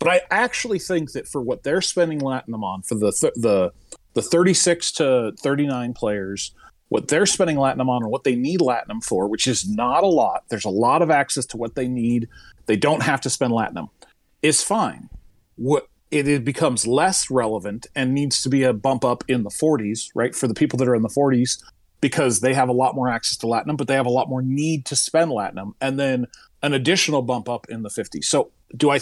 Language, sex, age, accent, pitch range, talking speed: English, male, 40-59, American, 120-155 Hz, 225 wpm